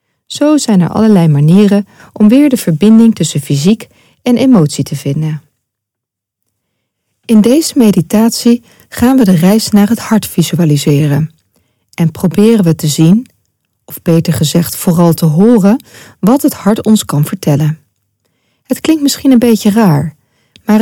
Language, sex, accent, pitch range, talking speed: Dutch, female, Dutch, 145-215 Hz, 145 wpm